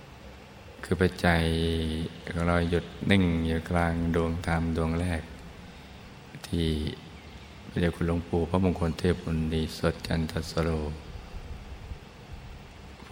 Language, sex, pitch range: Thai, male, 75-85 Hz